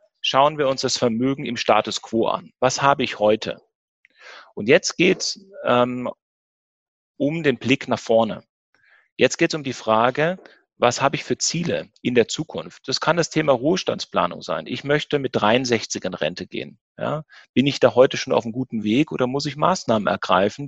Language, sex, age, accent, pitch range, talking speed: German, male, 30-49, German, 115-145 Hz, 190 wpm